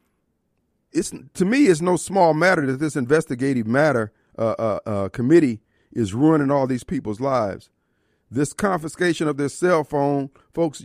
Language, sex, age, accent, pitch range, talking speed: English, male, 40-59, American, 135-195 Hz, 155 wpm